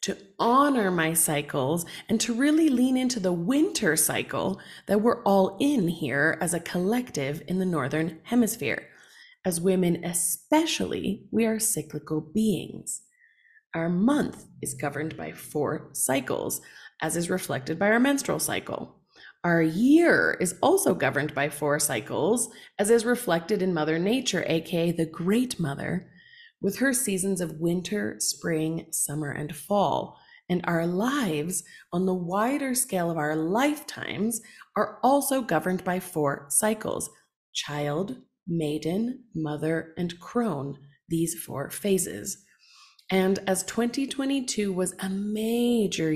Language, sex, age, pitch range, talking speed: English, female, 30-49, 165-225 Hz, 135 wpm